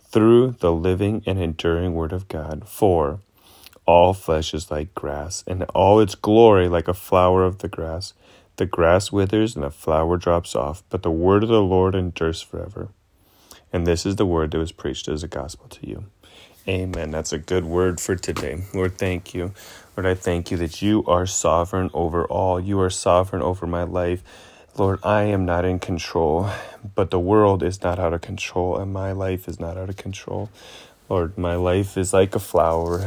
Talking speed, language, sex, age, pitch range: 195 wpm, English, male, 30-49, 85-100 Hz